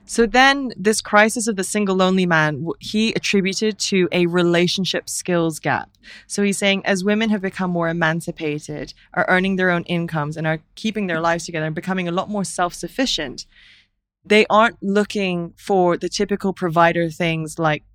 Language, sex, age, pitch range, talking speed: English, female, 20-39, 155-190 Hz, 170 wpm